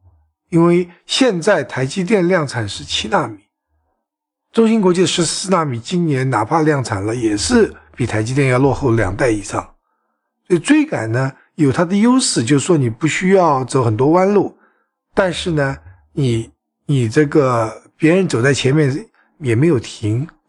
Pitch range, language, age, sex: 120-165 Hz, Chinese, 60-79, male